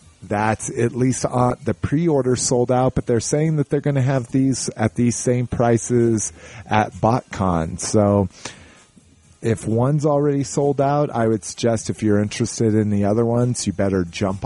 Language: English